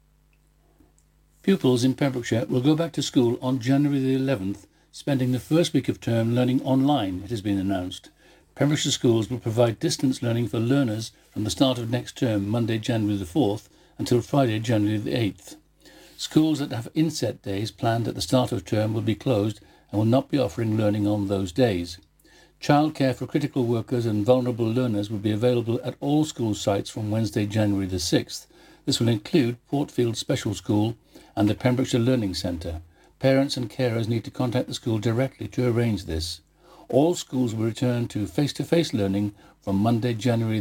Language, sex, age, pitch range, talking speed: English, male, 60-79, 105-135 Hz, 180 wpm